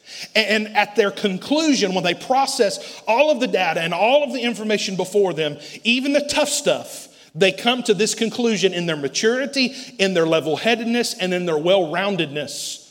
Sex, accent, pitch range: male, American, 175-240 Hz